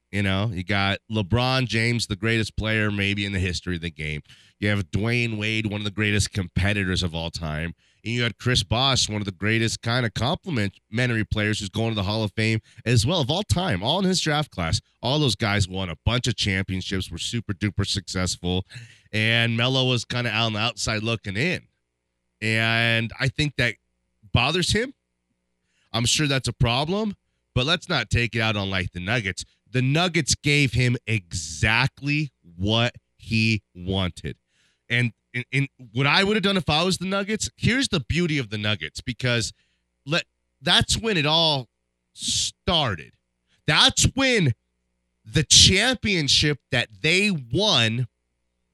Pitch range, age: 100-130 Hz, 30-49